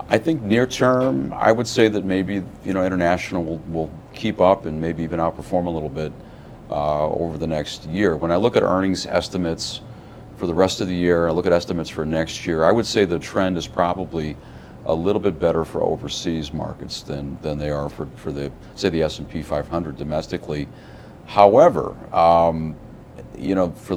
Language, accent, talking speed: English, American, 195 wpm